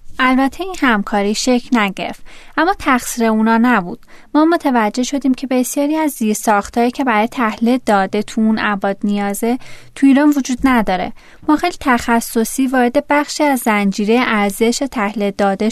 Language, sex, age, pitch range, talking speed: Persian, female, 20-39, 210-265 Hz, 135 wpm